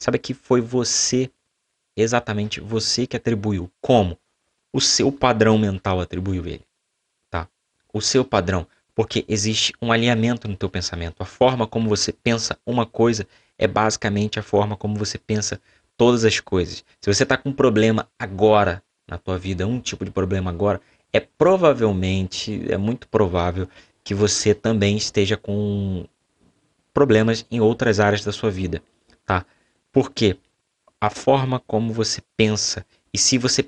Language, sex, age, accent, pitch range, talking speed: Portuguese, male, 20-39, Brazilian, 100-115 Hz, 150 wpm